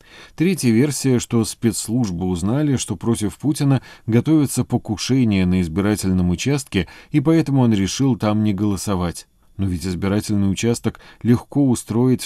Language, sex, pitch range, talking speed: Russian, male, 95-125 Hz, 125 wpm